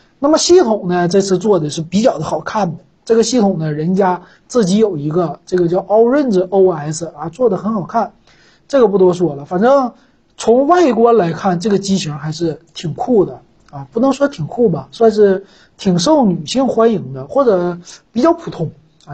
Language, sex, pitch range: Chinese, male, 170-230 Hz